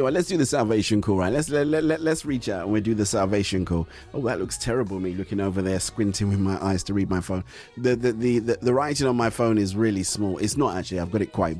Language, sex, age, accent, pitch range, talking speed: English, male, 30-49, British, 100-125 Hz, 280 wpm